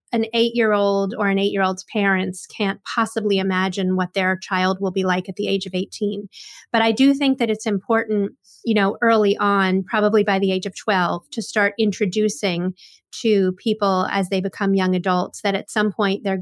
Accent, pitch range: American, 190-220 Hz